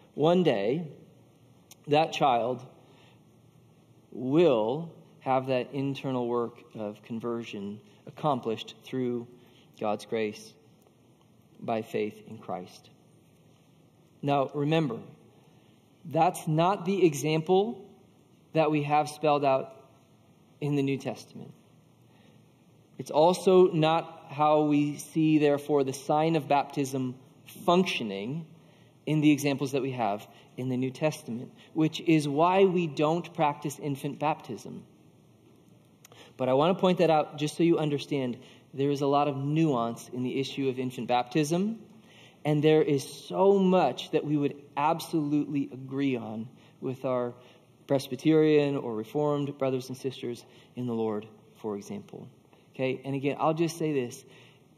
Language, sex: English, male